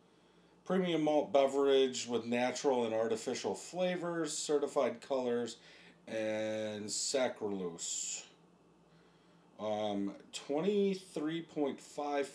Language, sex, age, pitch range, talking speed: English, male, 30-49, 120-185 Hz, 70 wpm